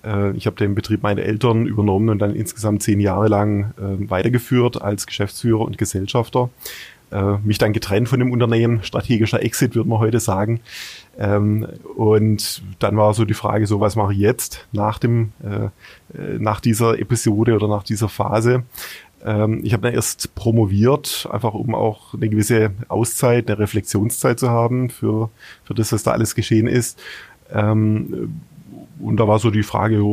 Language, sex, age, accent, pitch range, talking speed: German, male, 30-49, German, 105-115 Hz, 170 wpm